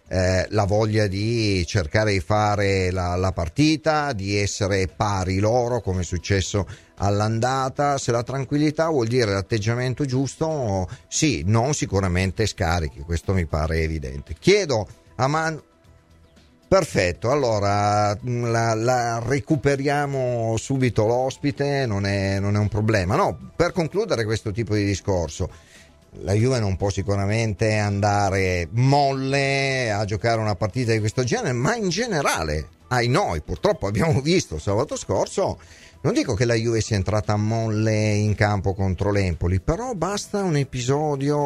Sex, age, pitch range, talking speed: male, 40-59, 95-125 Hz, 140 wpm